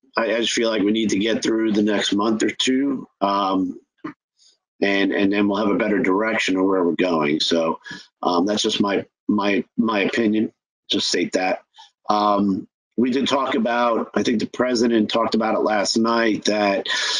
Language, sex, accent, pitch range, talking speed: English, male, American, 105-120 Hz, 185 wpm